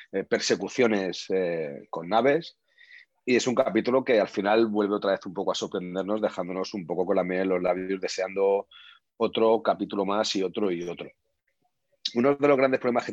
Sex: male